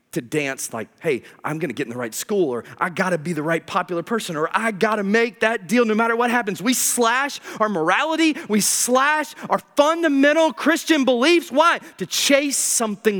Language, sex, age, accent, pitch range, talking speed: English, male, 30-49, American, 150-245 Hz, 195 wpm